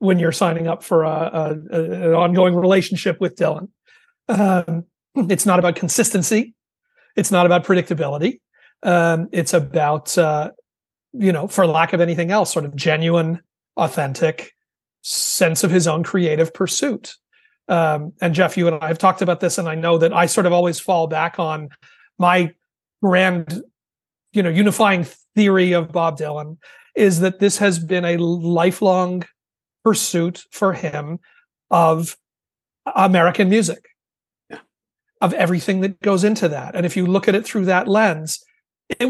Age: 40-59